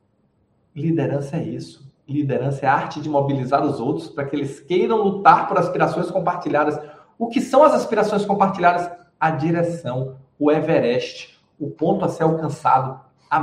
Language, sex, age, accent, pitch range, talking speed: Portuguese, male, 40-59, Brazilian, 135-190 Hz, 155 wpm